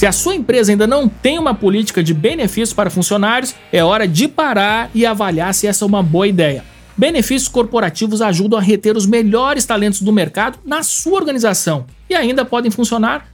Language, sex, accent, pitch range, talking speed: Portuguese, male, Brazilian, 205-255 Hz, 190 wpm